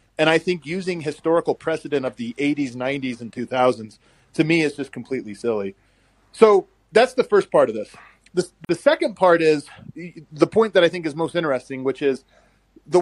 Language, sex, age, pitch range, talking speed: English, male, 30-49, 130-180 Hz, 190 wpm